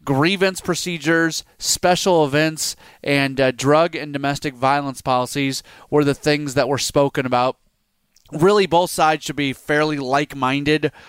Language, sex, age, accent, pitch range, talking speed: English, male, 30-49, American, 130-150 Hz, 135 wpm